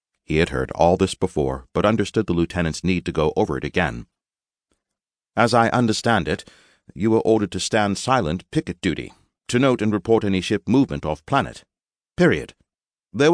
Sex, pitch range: male, 85-120 Hz